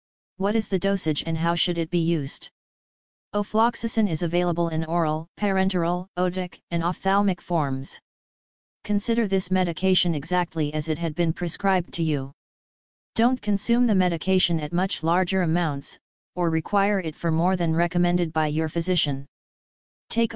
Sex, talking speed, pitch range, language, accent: female, 145 wpm, 165-195 Hz, English, American